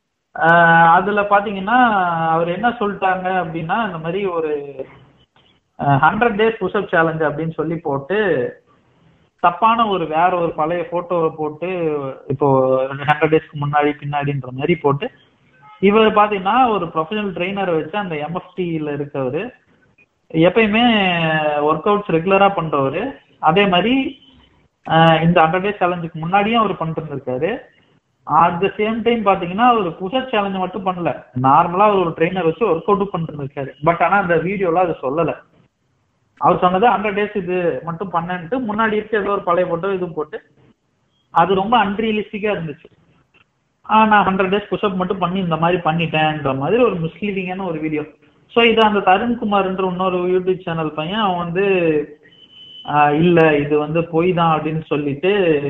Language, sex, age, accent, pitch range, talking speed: Tamil, male, 50-69, native, 155-200 Hz, 115 wpm